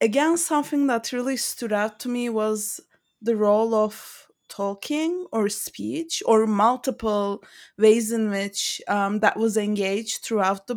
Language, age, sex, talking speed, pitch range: English, 20-39, female, 145 wpm, 215-265 Hz